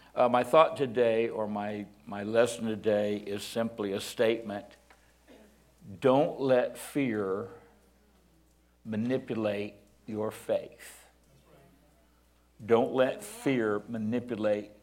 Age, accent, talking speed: 60-79, American, 95 wpm